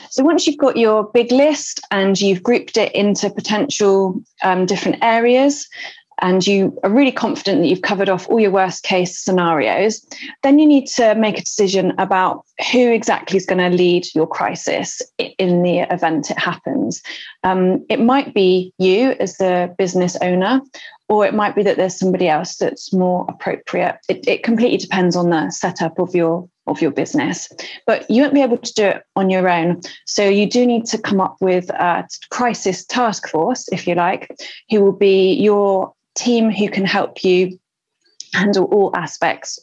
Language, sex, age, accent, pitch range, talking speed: English, female, 30-49, British, 185-230 Hz, 185 wpm